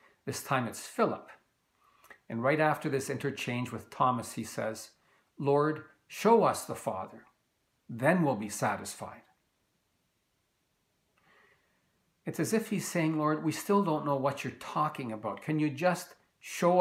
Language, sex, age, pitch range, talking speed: English, male, 60-79, 130-170 Hz, 145 wpm